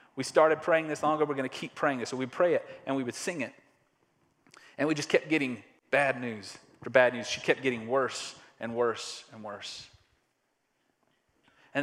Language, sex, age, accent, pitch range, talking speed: English, male, 30-49, American, 125-145 Hz, 200 wpm